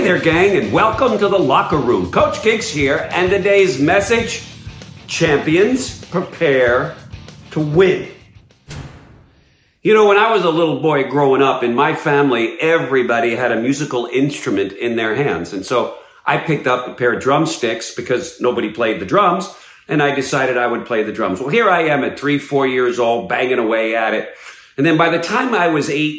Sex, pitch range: male, 125-165 Hz